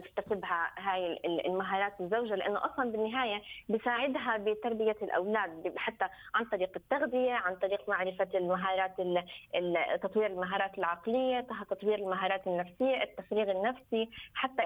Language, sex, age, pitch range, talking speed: Arabic, female, 20-39, 195-240 Hz, 110 wpm